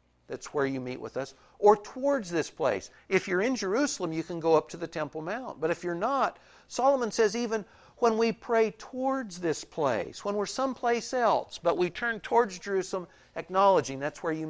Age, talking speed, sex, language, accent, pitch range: 60-79, 200 wpm, male, English, American, 130-205 Hz